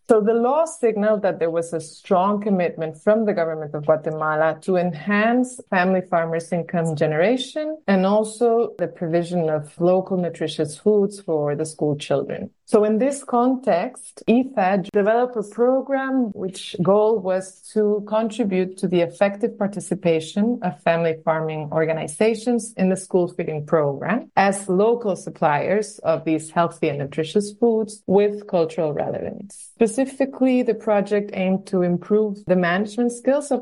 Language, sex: English, female